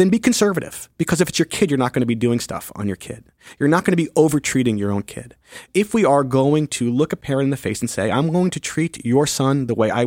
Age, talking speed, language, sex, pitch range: 30-49, 290 wpm, English, male, 120-155 Hz